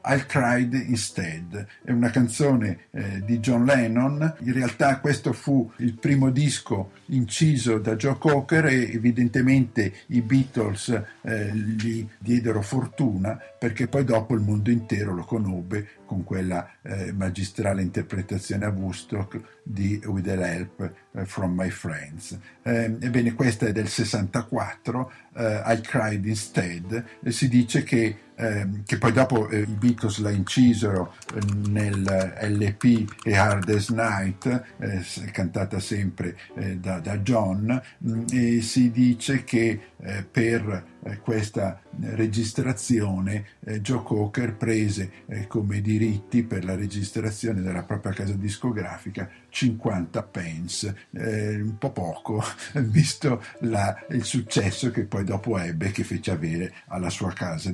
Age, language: 50-69, Italian